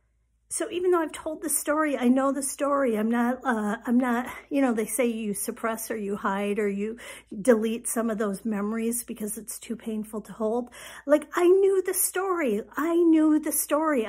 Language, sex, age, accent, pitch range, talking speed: English, female, 50-69, American, 225-285 Hz, 200 wpm